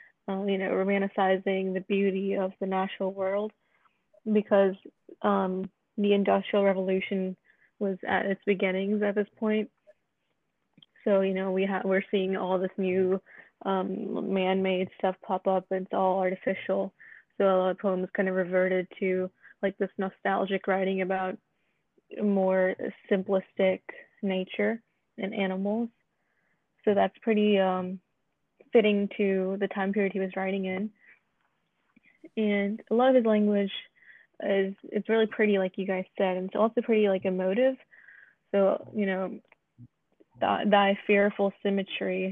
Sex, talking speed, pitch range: female, 140 wpm, 190-205 Hz